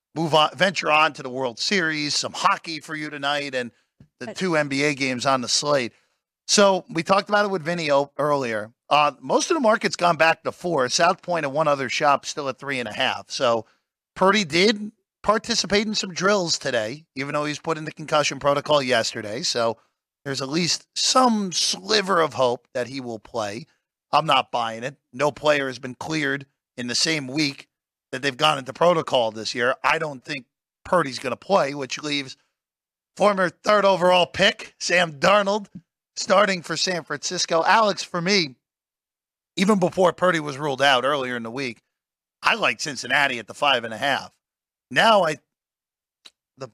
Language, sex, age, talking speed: English, male, 40-59, 185 wpm